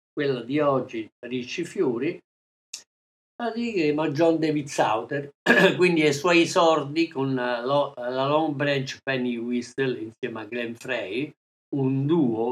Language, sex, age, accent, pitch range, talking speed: Italian, male, 50-69, native, 125-165 Hz, 130 wpm